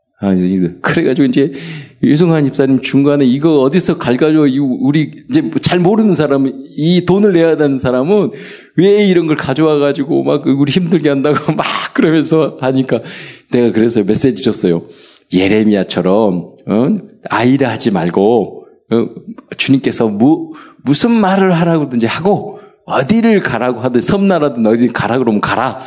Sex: male